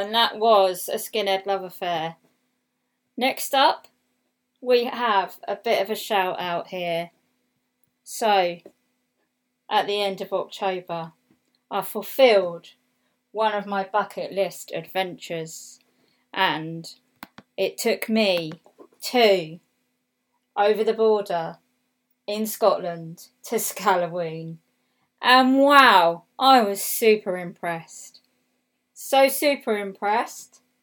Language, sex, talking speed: English, female, 105 wpm